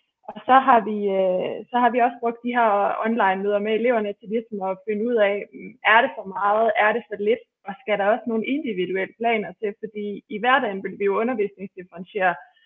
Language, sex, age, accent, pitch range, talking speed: Danish, female, 20-39, native, 195-230 Hz, 210 wpm